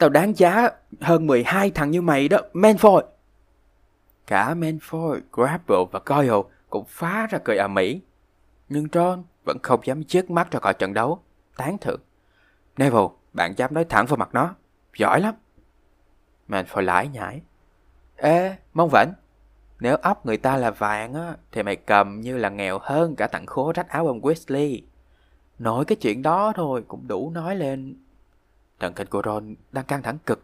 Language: Vietnamese